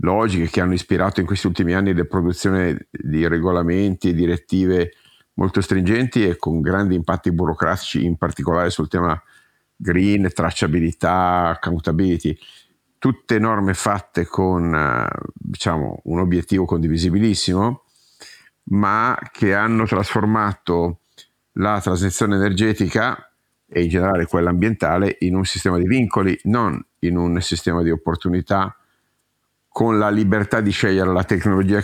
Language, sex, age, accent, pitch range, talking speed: Italian, male, 50-69, native, 85-100 Hz, 125 wpm